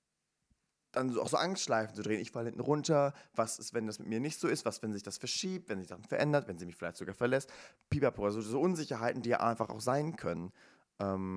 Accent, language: German, German